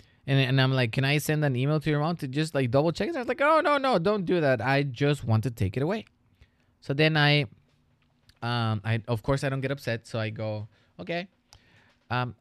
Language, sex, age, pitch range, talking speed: English, male, 20-39, 110-140 Hz, 240 wpm